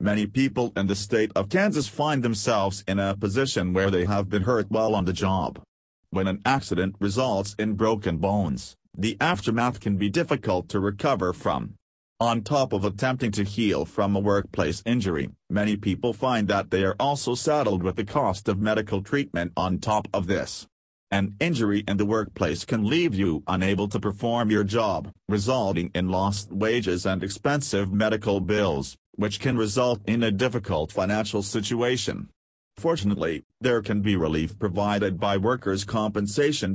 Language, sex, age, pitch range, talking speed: English, male, 40-59, 95-115 Hz, 165 wpm